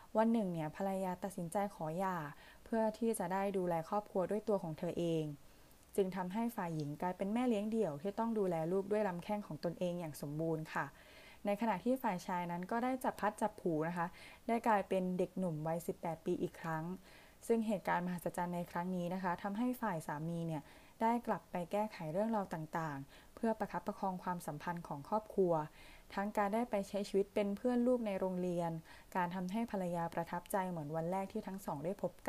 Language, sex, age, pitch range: Thai, female, 20-39, 170-210 Hz